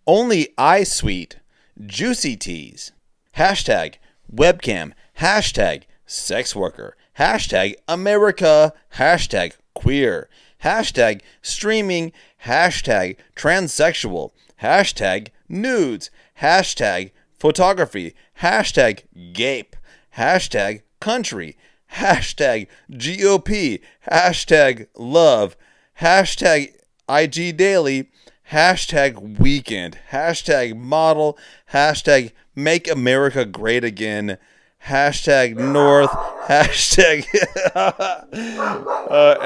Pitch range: 115-175 Hz